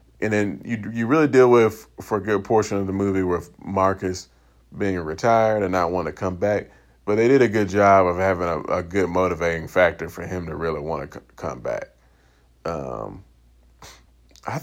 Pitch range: 85-105 Hz